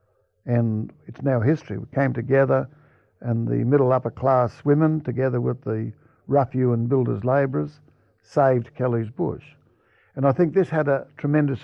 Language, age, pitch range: English, 60-79, 115-145 Hz